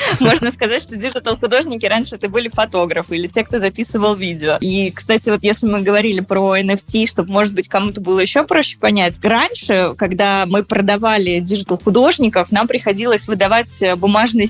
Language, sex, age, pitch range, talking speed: Russian, female, 20-39, 190-225 Hz, 155 wpm